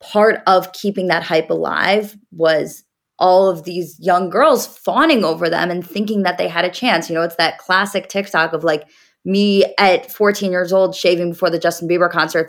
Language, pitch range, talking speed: English, 165-210 Hz, 195 wpm